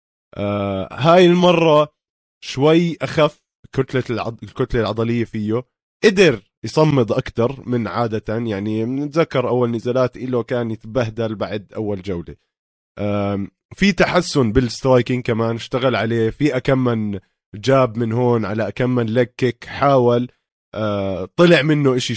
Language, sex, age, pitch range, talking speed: Arabic, male, 20-39, 110-135 Hz, 120 wpm